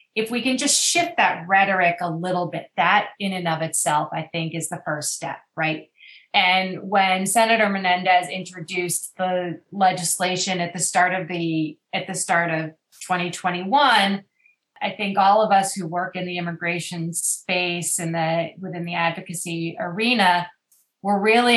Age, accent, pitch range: 30-49, American, 170-195 Hz